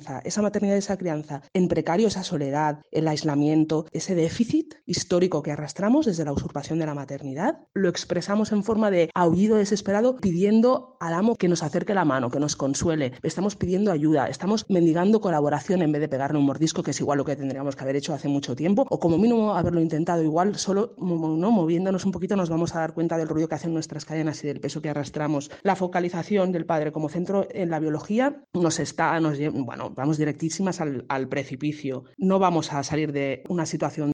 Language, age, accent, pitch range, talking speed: Spanish, 30-49, Spanish, 145-180 Hz, 205 wpm